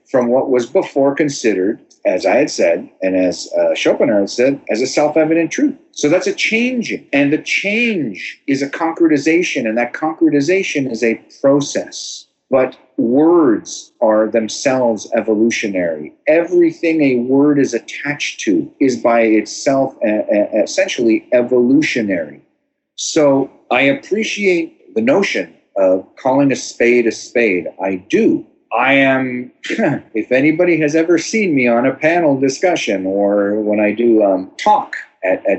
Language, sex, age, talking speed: English, male, 50-69, 145 wpm